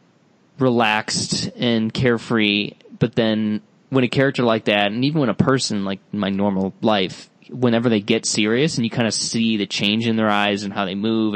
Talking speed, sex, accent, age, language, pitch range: 195 wpm, male, American, 20-39, English, 105-130 Hz